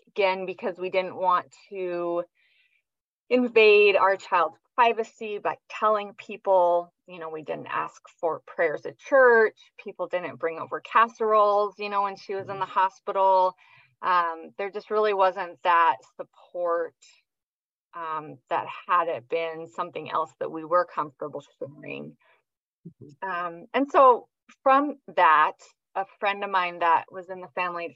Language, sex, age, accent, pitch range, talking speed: English, female, 30-49, American, 175-215 Hz, 145 wpm